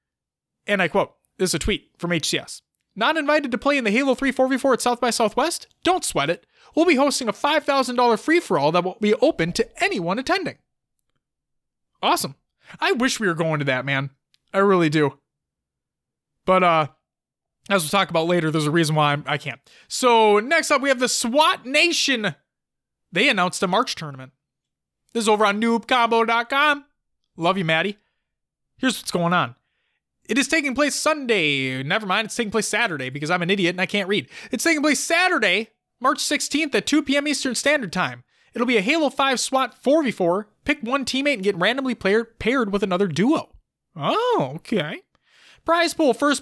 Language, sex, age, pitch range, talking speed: English, male, 20-39, 180-275 Hz, 180 wpm